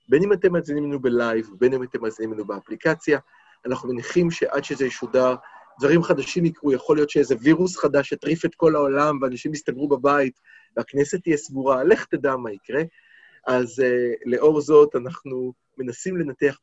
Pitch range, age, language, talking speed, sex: 125-170 Hz, 30-49, Hebrew, 160 wpm, male